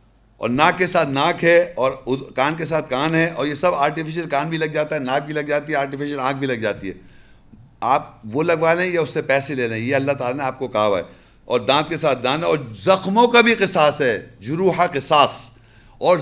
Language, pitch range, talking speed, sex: English, 120-160 Hz, 235 wpm, male